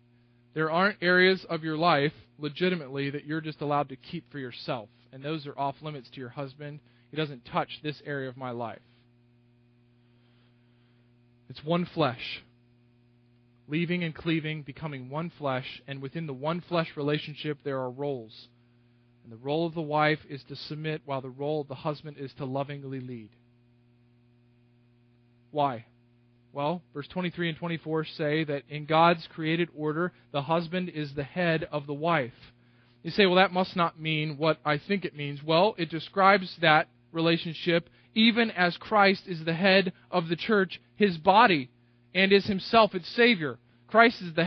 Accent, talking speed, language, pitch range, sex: American, 165 wpm, English, 125-180 Hz, male